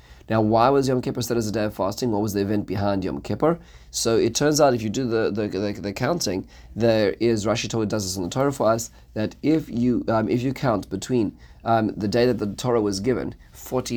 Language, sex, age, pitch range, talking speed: English, male, 30-49, 100-125 Hz, 250 wpm